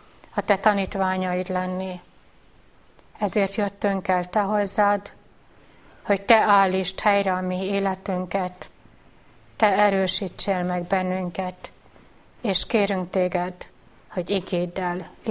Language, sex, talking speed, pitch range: Hungarian, female, 100 wpm, 190-225 Hz